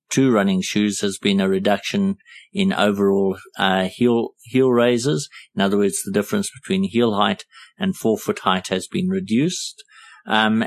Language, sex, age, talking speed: English, male, 50-69, 165 wpm